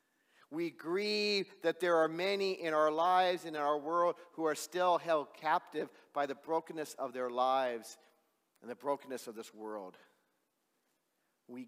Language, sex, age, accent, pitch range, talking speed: English, male, 50-69, American, 130-165 Hz, 160 wpm